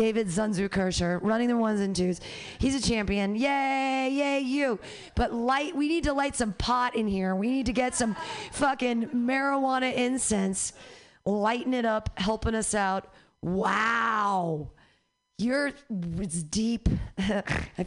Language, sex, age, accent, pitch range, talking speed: English, female, 30-49, American, 190-255 Hz, 140 wpm